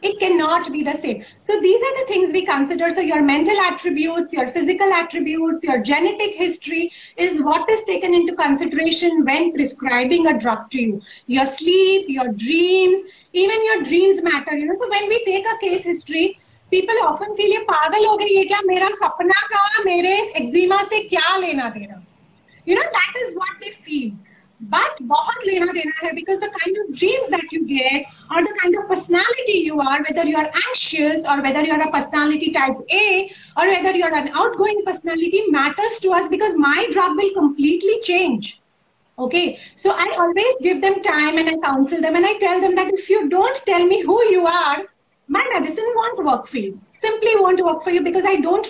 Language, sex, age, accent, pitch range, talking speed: English, female, 30-49, Indian, 300-390 Hz, 185 wpm